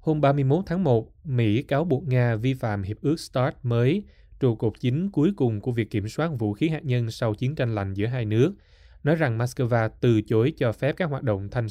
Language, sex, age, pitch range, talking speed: Vietnamese, male, 20-39, 105-130 Hz, 230 wpm